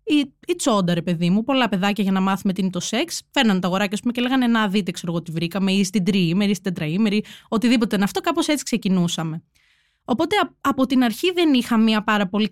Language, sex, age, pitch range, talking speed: Greek, female, 20-39, 205-285 Hz, 220 wpm